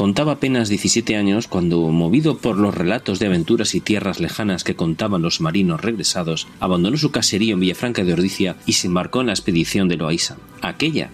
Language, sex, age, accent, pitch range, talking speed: Spanish, male, 40-59, Spanish, 90-120 Hz, 190 wpm